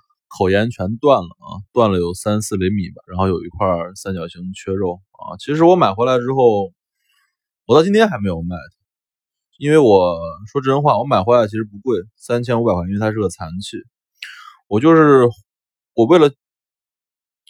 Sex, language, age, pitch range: male, Chinese, 20-39, 90-125 Hz